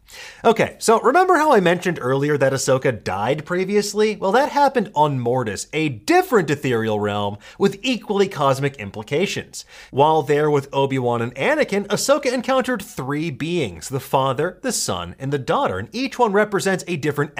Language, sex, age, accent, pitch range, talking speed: English, male, 30-49, American, 140-210 Hz, 160 wpm